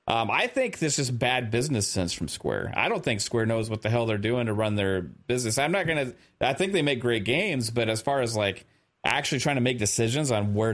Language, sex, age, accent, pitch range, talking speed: English, male, 30-49, American, 115-160 Hz, 250 wpm